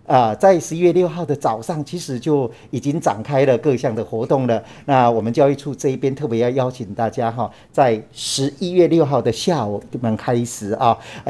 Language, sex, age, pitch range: Chinese, male, 50-69, 110-130 Hz